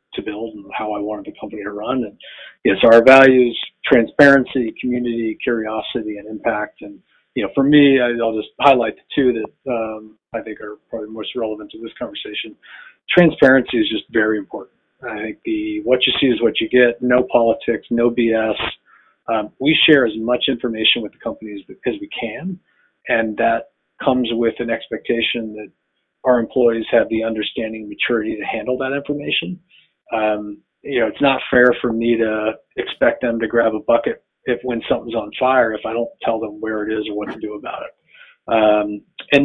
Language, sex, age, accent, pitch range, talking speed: English, male, 40-59, American, 110-135 Hz, 195 wpm